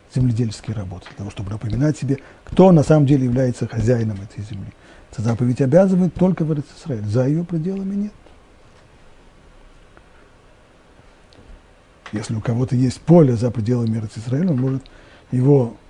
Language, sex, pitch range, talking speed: Russian, male, 115-160 Hz, 130 wpm